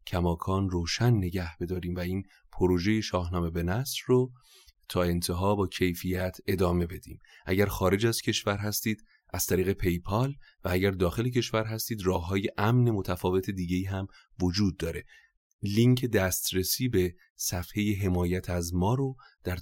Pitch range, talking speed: 85-105 Hz, 145 wpm